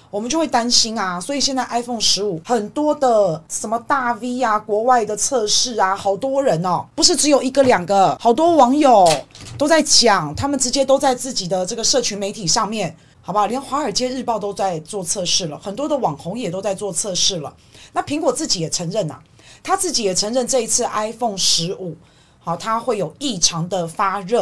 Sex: female